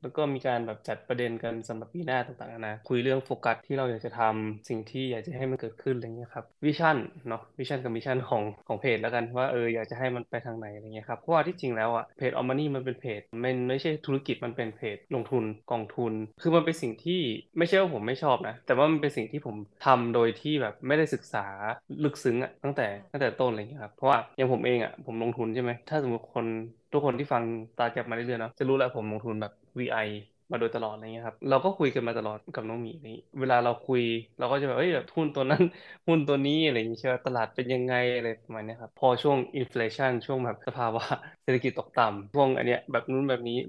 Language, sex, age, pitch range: Thai, male, 20-39, 115-135 Hz